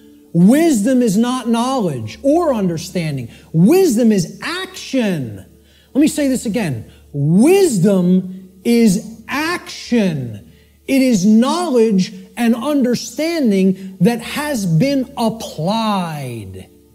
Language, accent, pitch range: English, American, 145-230 Hz